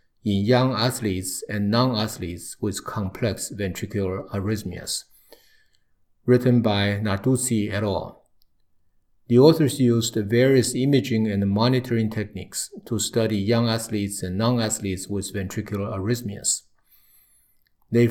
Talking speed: 105 wpm